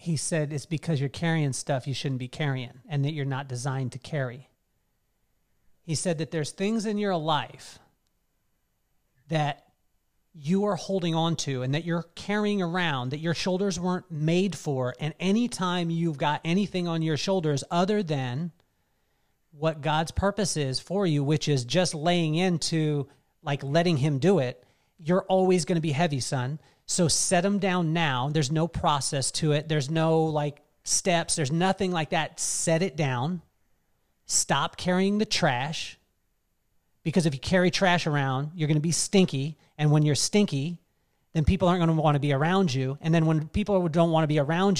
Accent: American